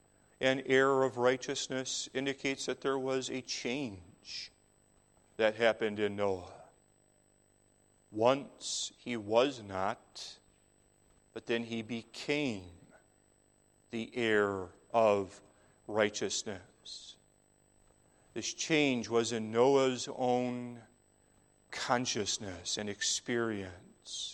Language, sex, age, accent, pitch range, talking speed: English, male, 40-59, American, 110-125 Hz, 85 wpm